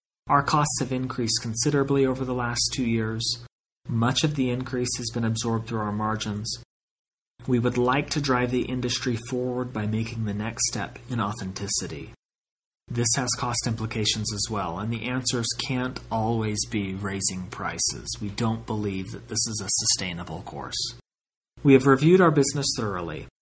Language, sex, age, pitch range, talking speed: English, male, 30-49, 110-125 Hz, 165 wpm